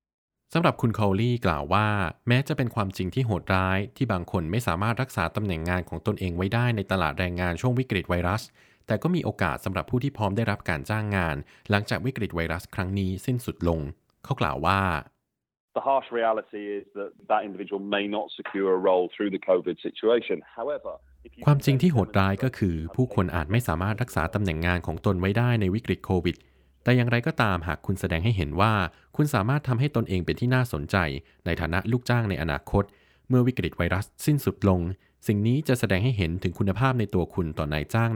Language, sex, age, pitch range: Thai, male, 20-39, 85-115 Hz